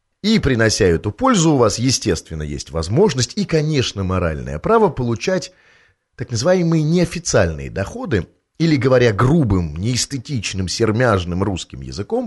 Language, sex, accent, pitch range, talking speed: Russian, male, native, 100-150 Hz, 120 wpm